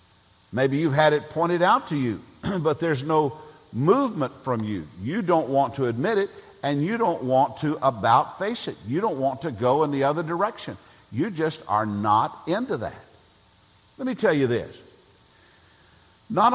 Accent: American